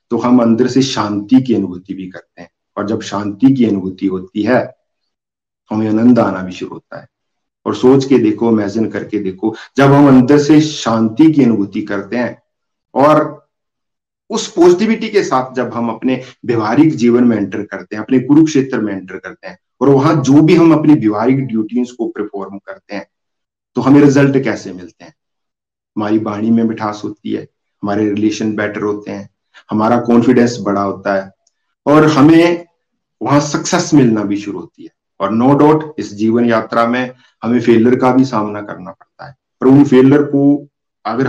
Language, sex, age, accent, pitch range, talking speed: Hindi, male, 50-69, native, 105-140 Hz, 180 wpm